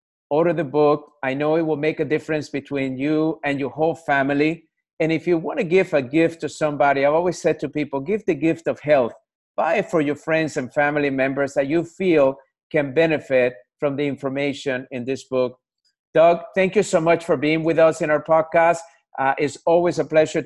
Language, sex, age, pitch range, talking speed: English, male, 50-69, 130-155 Hz, 210 wpm